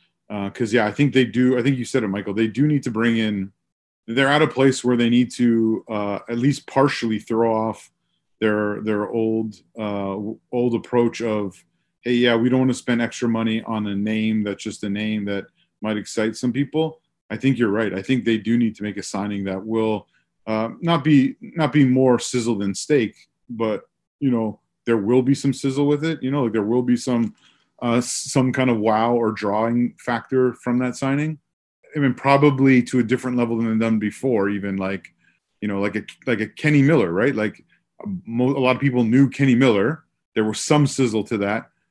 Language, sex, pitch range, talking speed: English, male, 110-130 Hz, 220 wpm